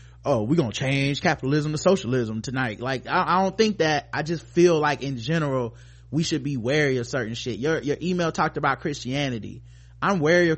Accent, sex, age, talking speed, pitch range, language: American, male, 20-39, 200 wpm, 120-160 Hz, English